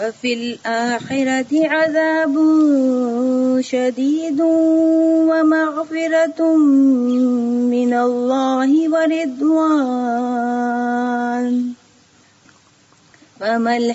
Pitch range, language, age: 240-290 Hz, Urdu, 30-49